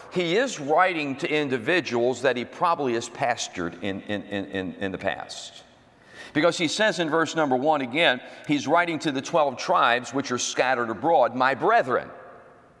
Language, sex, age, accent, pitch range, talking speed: English, male, 50-69, American, 135-190 Hz, 160 wpm